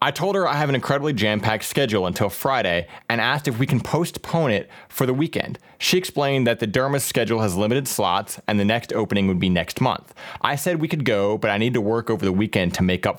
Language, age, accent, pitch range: English, 30-49, American, 110-145 Hz